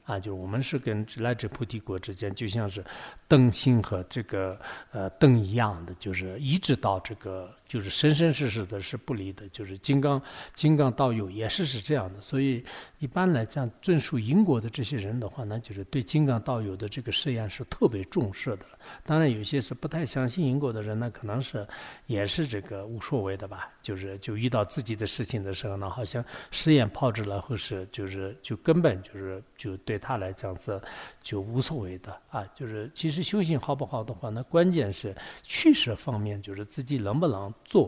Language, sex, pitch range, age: English, male, 100-135 Hz, 60-79